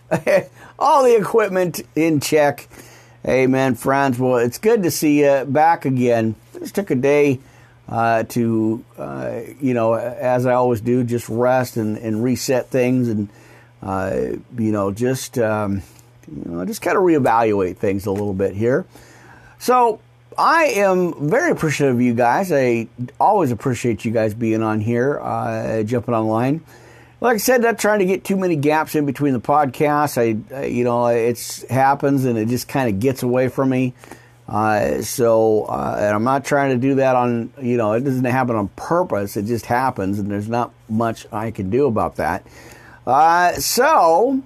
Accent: American